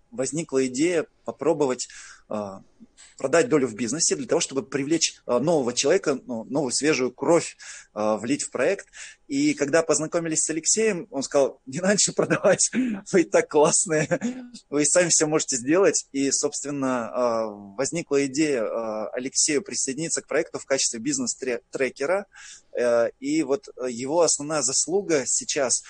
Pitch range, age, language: 130-170 Hz, 20-39, Russian